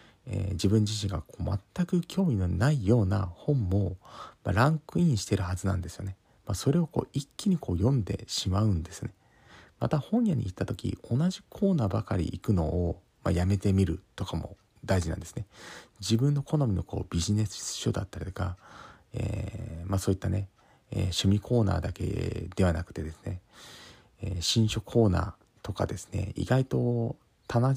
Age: 40-59